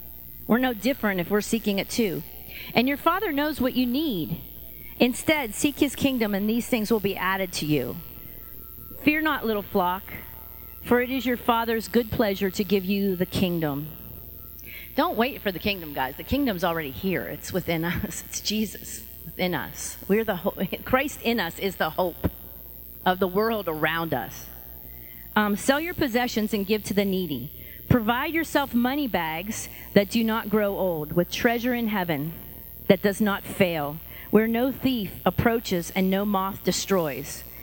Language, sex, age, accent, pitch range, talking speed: English, female, 40-59, American, 160-230 Hz, 170 wpm